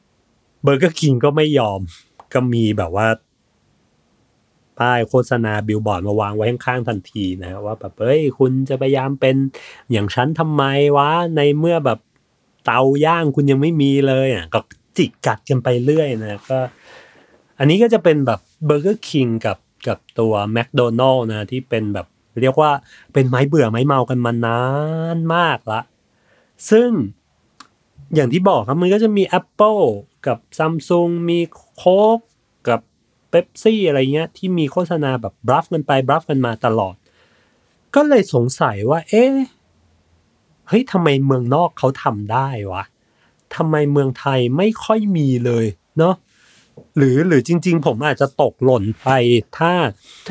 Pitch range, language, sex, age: 115-160 Hz, Thai, male, 30-49